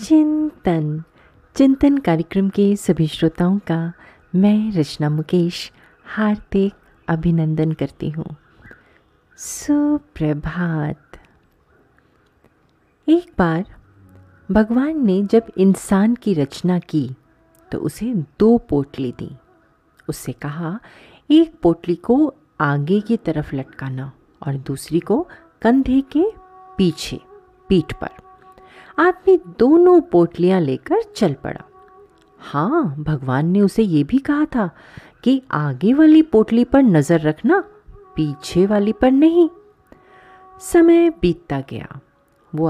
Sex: female